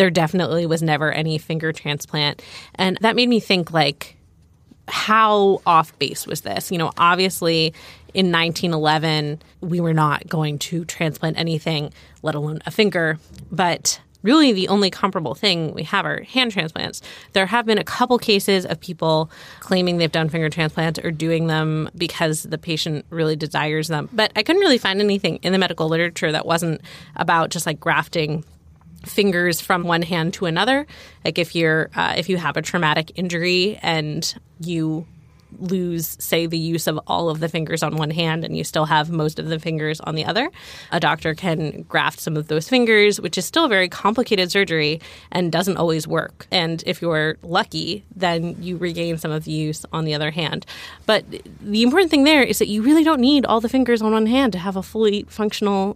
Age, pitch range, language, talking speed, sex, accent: 20-39, 160-200 Hz, English, 195 wpm, female, American